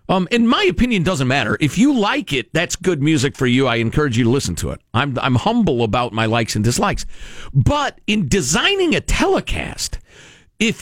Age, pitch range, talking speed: 50-69, 125-205 Hz, 200 wpm